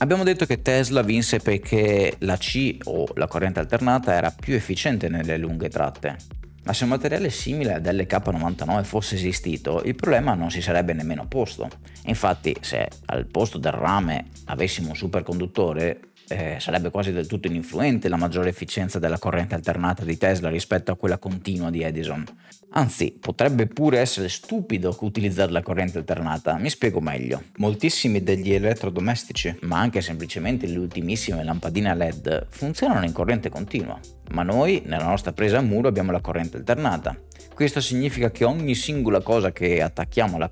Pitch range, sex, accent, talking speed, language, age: 85-115 Hz, male, native, 160 wpm, Italian, 30-49